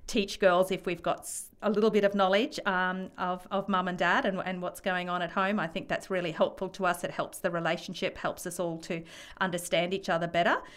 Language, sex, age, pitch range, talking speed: English, female, 40-59, 170-195 Hz, 235 wpm